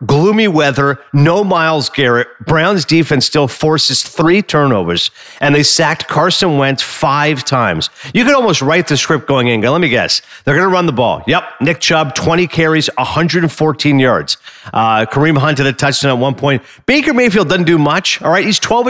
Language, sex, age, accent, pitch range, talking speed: English, male, 40-59, American, 140-190 Hz, 190 wpm